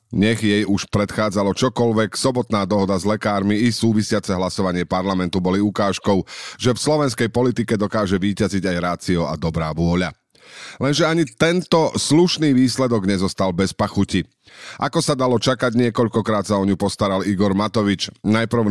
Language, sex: Slovak, male